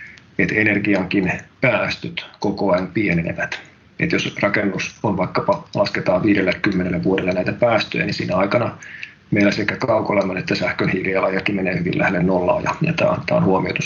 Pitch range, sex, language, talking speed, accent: 105-135 Hz, male, Finnish, 145 wpm, native